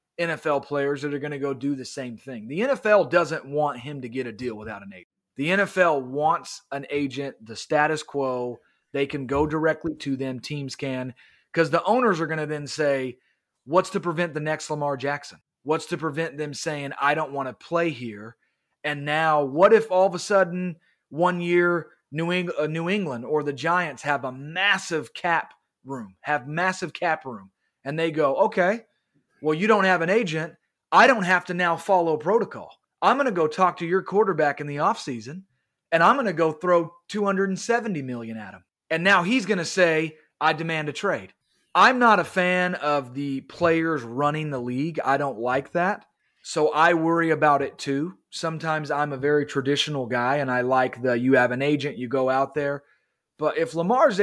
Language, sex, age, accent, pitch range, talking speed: English, male, 30-49, American, 140-175 Hz, 200 wpm